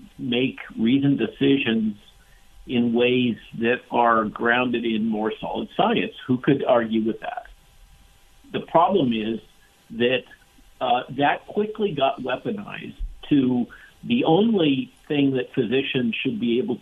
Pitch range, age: 115-140 Hz, 50-69